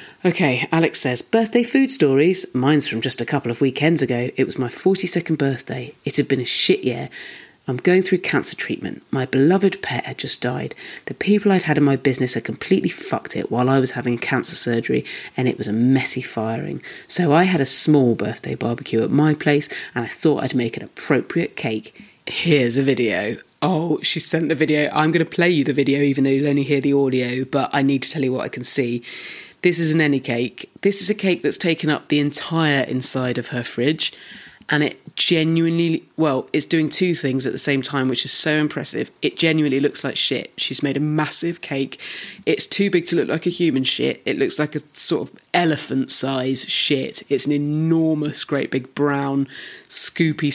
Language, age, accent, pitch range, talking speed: English, 30-49, British, 130-160 Hz, 210 wpm